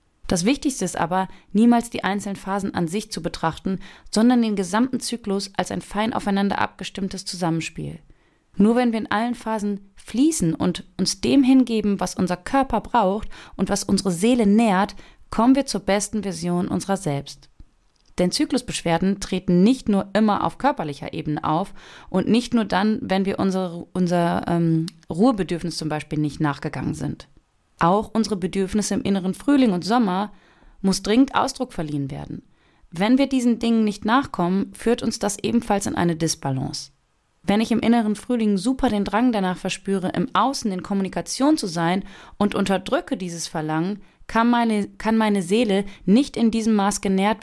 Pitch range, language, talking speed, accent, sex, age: 180-225 Hz, German, 165 wpm, German, female, 30-49